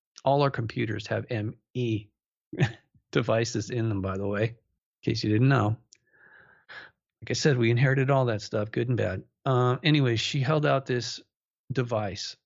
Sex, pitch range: male, 110-135 Hz